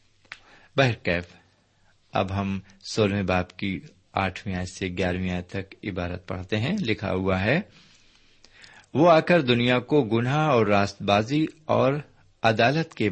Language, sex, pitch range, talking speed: Urdu, male, 95-125 Hz, 130 wpm